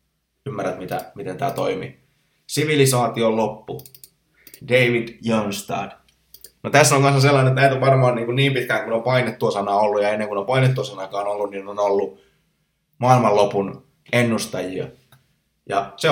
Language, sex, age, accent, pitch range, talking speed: Finnish, male, 20-39, native, 105-135 Hz, 155 wpm